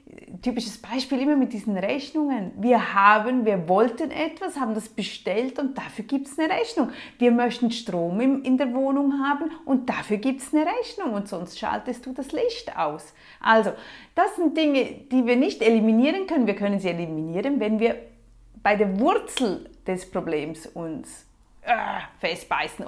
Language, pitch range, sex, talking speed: German, 215-285 Hz, female, 165 wpm